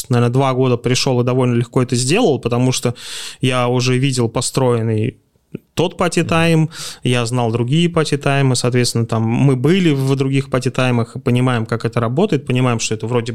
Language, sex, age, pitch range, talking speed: Russian, male, 20-39, 120-140 Hz, 170 wpm